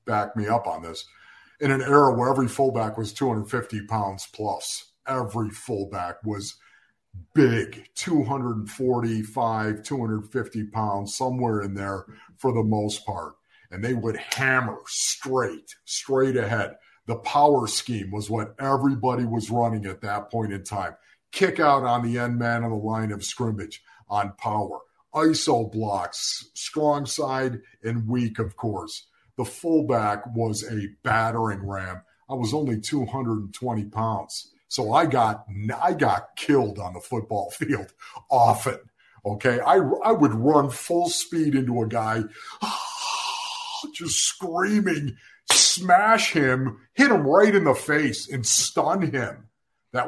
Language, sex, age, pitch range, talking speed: English, male, 50-69, 110-140 Hz, 145 wpm